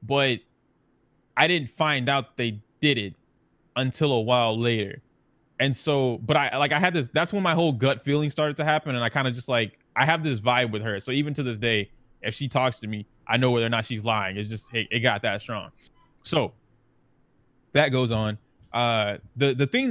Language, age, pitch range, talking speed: English, 20-39, 115-145 Hz, 220 wpm